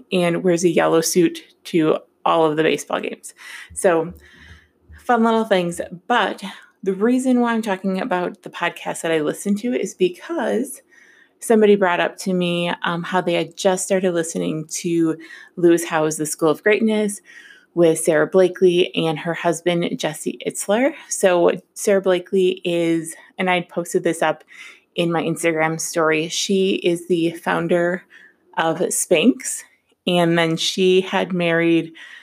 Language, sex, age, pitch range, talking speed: English, female, 20-39, 165-195 Hz, 150 wpm